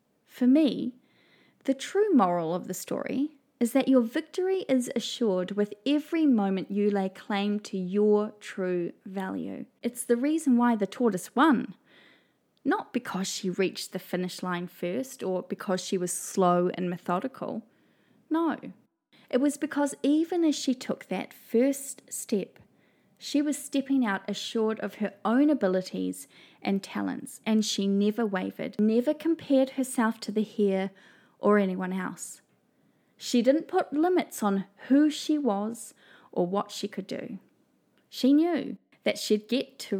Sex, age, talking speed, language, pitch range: female, 20-39, 150 wpm, English, 195-270 Hz